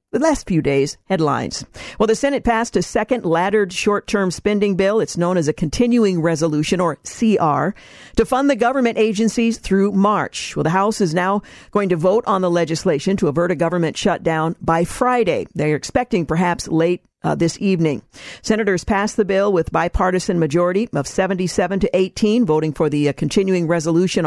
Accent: American